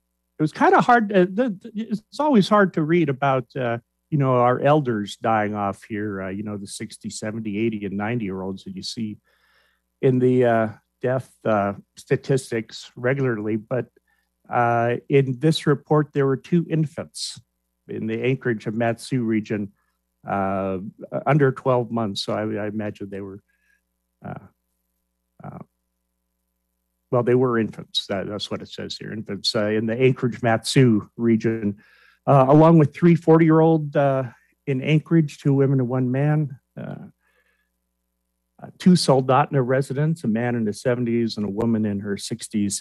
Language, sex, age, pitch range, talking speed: English, male, 50-69, 95-145 Hz, 155 wpm